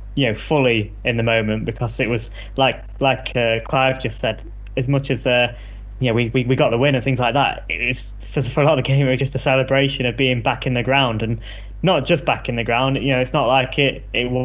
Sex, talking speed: male, 265 wpm